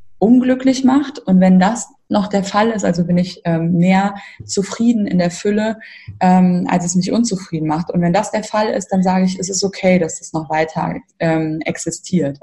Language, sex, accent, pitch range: German, female, German, 170-205 Hz